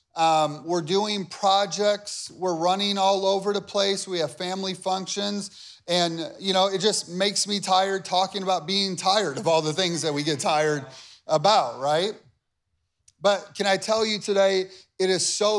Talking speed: 175 wpm